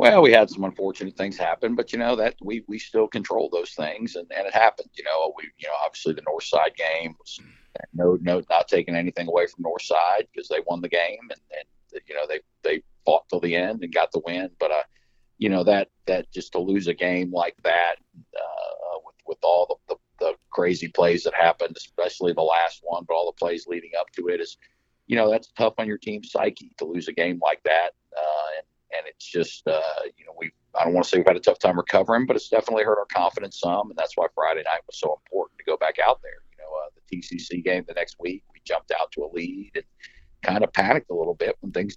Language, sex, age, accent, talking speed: English, male, 50-69, American, 250 wpm